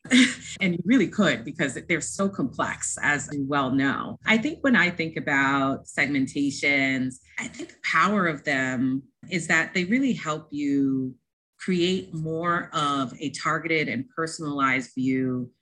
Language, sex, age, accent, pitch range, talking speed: English, female, 30-49, American, 135-175 Hz, 150 wpm